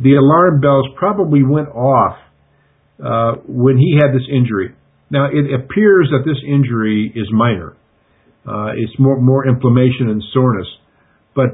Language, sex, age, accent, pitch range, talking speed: English, male, 50-69, American, 120-145 Hz, 145 wpm